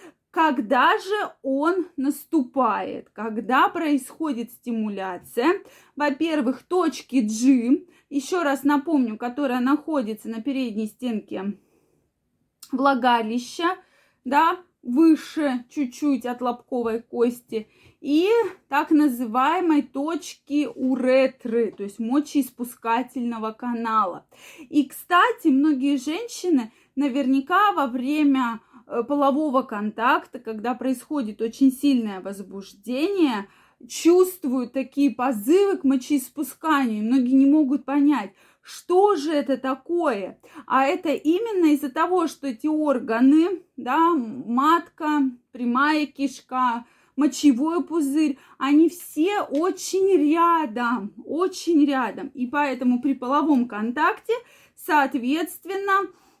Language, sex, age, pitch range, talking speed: Russian, female, 20-39, 250-320 Hz, 95 wpm